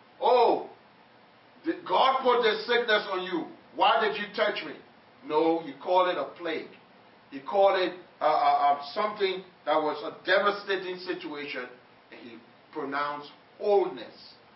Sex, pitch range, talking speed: male, 135-180 Hz, 145 wpm